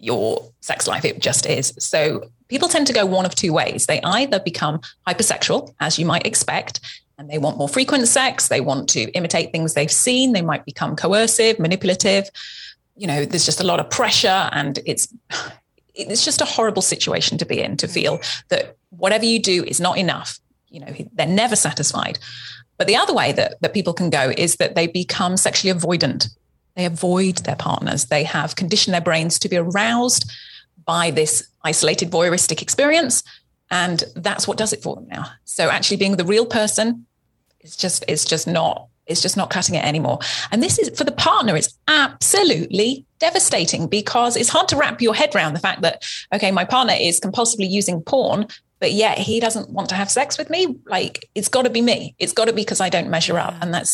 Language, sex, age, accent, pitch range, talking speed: English, female, 30-49, British, 165-225 Hz, 205 wpm